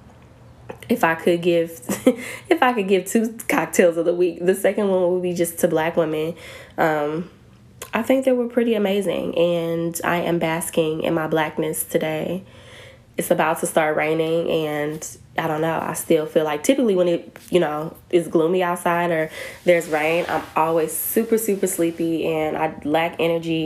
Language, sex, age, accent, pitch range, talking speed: English, female, 10-29, American, 155-180 Hz, 180 wpm